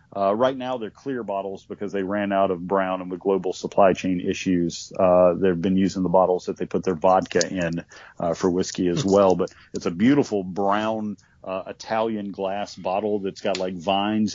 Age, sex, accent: 40-59, male, American